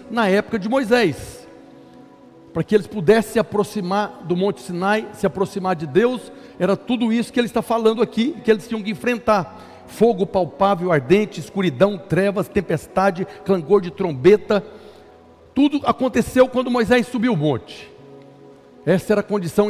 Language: Portuguese